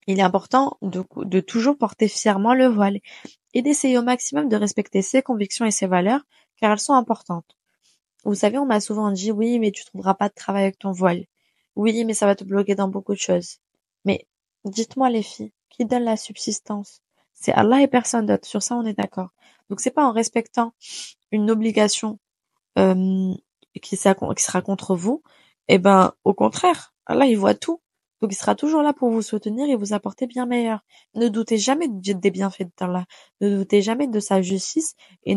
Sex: female